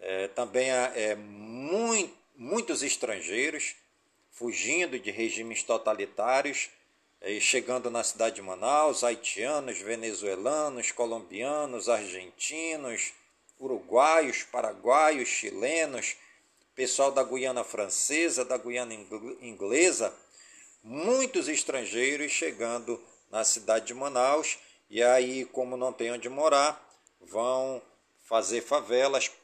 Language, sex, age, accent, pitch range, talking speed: Portuguese, male, 50-69, Brazilian, 120-165 Hz, 100 wpm